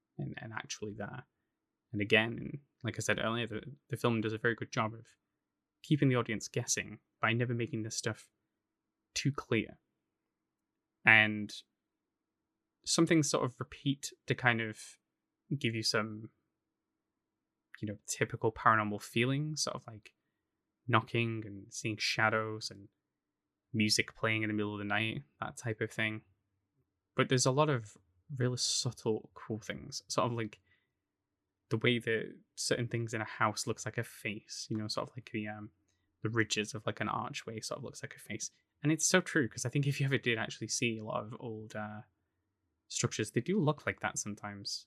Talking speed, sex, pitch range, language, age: 180 wpm, male, 105-120 Hz, English, 10-29